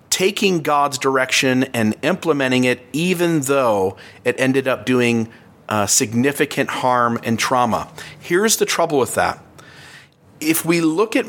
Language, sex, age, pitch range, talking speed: English, male, 40-59, 125-165 Hz, 140 wpm